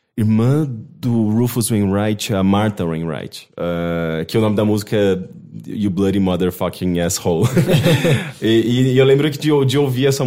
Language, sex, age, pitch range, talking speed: Portuguese, male, 20-39, 95-125 Hz, 160 wpm